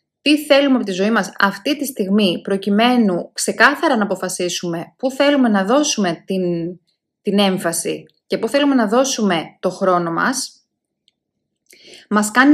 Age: 20-39